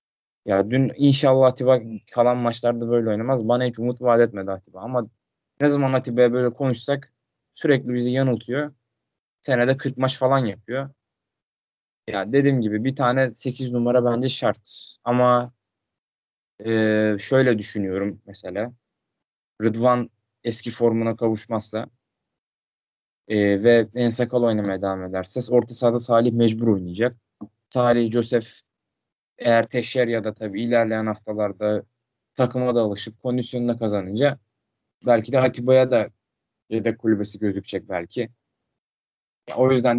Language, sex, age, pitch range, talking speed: Turkish, male, 20-39, 110-130 Hz, 125 wpm